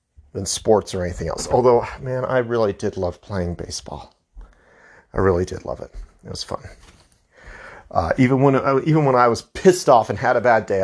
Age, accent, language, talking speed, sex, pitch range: 40-59, American, English, 200 wpm, male, 90-125 Hz